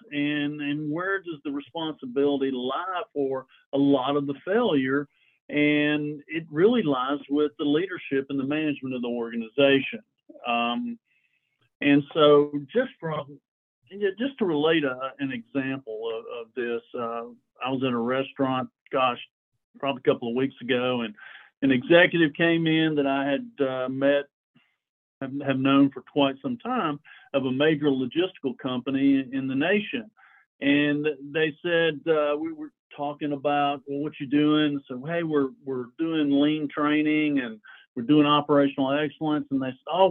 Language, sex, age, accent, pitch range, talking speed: English, male, 50-69, American, 135-165 Hz, 160 wpm